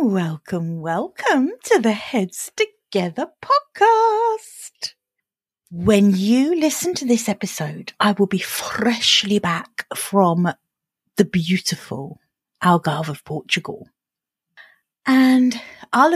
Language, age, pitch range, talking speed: English, 40-59, 180-245 Hz, 95 wpm